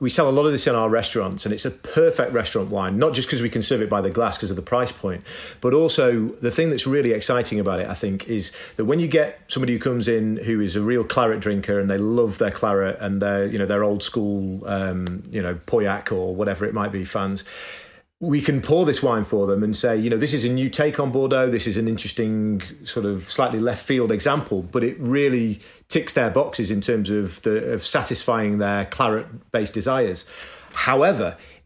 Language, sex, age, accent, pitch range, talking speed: English, male, 40-59, British, 100-130 Hz, 230 wpm